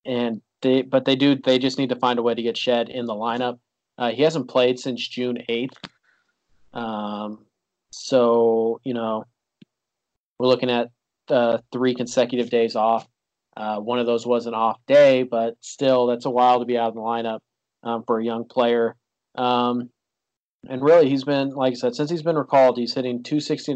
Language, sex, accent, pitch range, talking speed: English, male, American, 115-130 Hz, 190 wpm